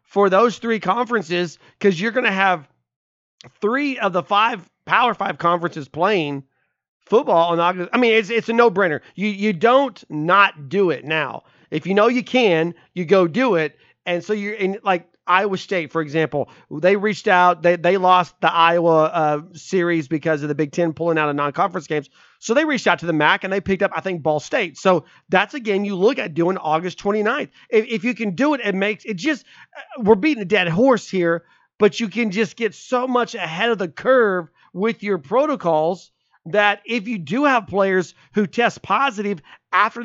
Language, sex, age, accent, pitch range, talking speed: English, male, 30-49, American, 160-215 Hz, 205 wpm